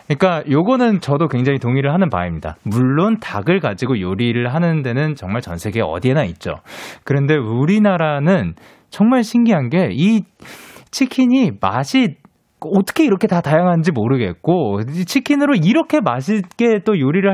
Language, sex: Korean, male